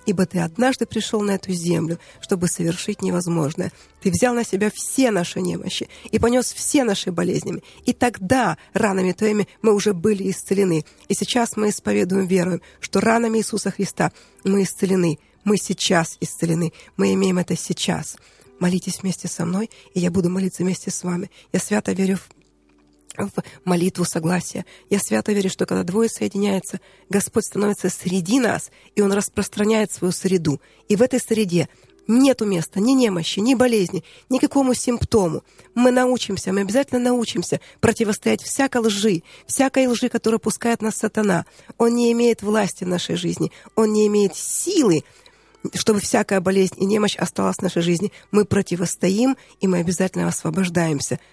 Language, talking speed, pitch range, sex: Russian, 160 wpm, 180-220 Hz, female